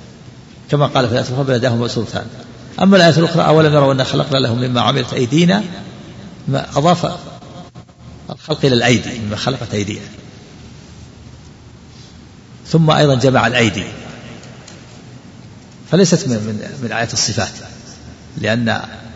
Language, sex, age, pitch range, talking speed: Arabic, male, 50-69, 115-145 Hz, 115 wpm